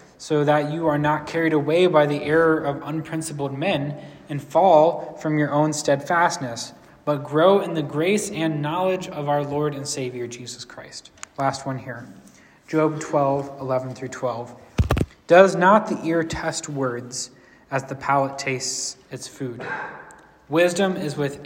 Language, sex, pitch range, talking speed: English, male, 130-160 Hz, 155 wpm